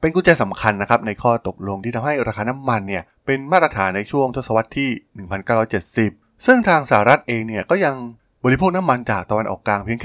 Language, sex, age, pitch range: Thai, male, 20-39, 95-125 Hz